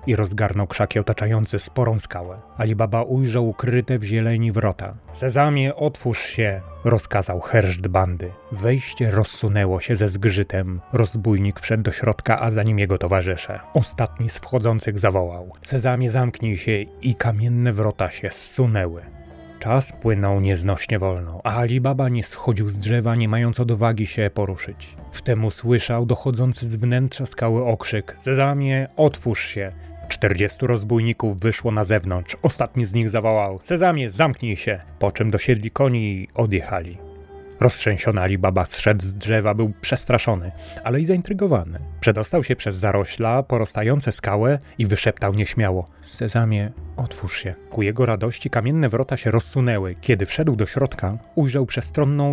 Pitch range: 100-125 Hz